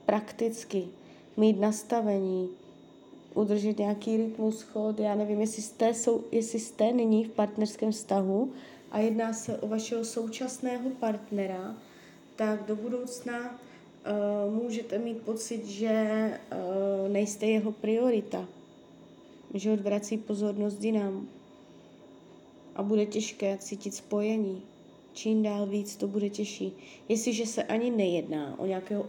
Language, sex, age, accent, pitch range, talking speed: Czech, female, 20-39, native, 190-220 Hz, 110 wpm